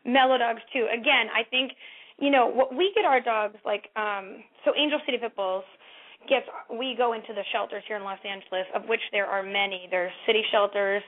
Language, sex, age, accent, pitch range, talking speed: English, female, 20-39, American, 200-245 Hz, 200 wpm